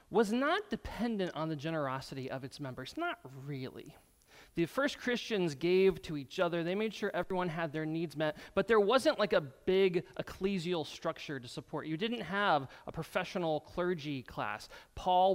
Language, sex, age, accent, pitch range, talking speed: English, male, 30-49, American, 155-210 Hz, 170 wpm